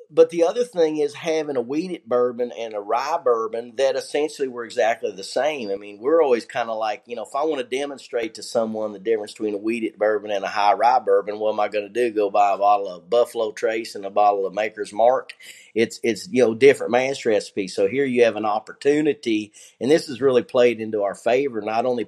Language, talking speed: English, 240 wpm